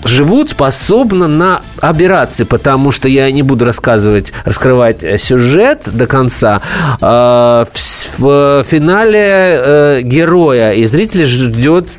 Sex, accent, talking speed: male, native, 100 wpm